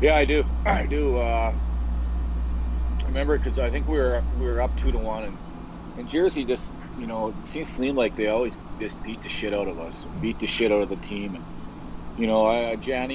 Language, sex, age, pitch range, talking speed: English, male, 30-49, 90-115 Hz, 230 wpm